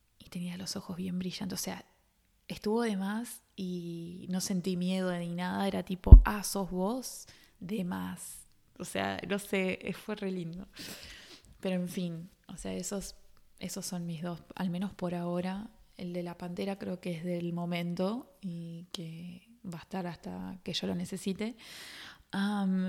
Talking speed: 175 wpm